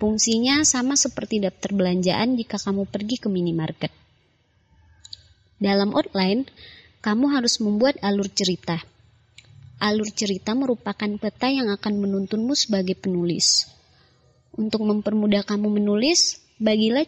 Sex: male